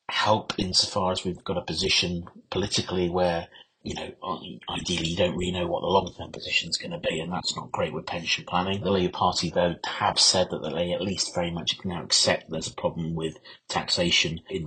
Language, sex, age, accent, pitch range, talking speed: English, male, 30-49, British, 90-110 Hz, 210 wpm